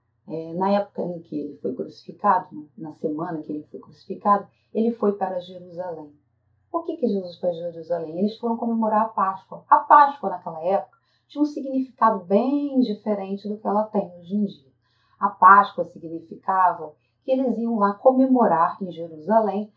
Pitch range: 170-225 Hz